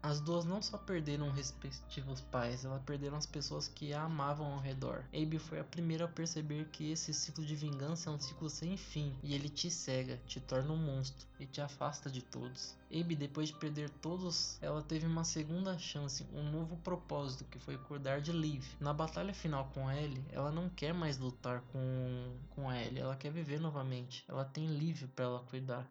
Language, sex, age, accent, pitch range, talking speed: Portuguese, male, 20-39, Brazilian, 135-160 Hz, 205 wpm